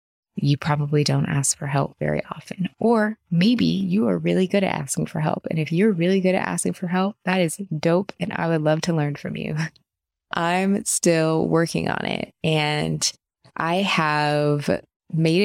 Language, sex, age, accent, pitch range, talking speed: English, female, 20-39, American, 145-180 Hz, 185 wpm